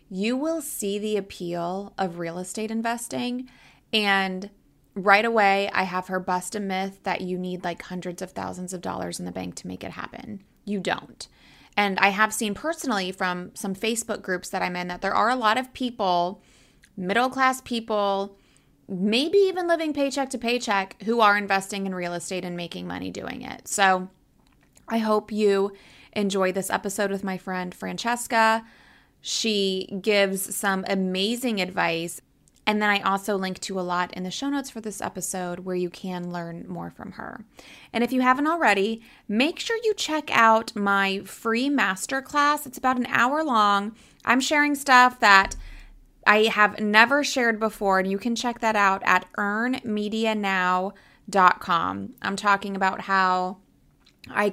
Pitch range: 185-230 Hz